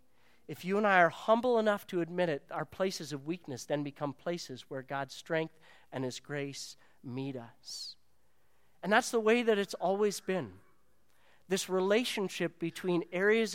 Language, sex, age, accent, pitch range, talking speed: English, male, 40-59, American, 145-195 Hz, 165 wpm